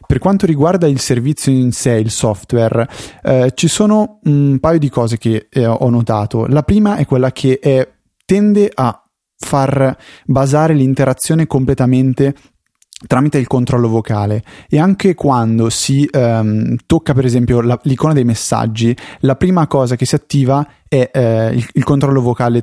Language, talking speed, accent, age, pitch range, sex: Italian, 155 wpm, native, 30-49, 115-140 Hz, male